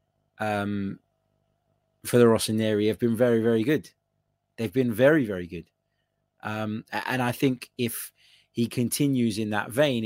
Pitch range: 105-130 Hz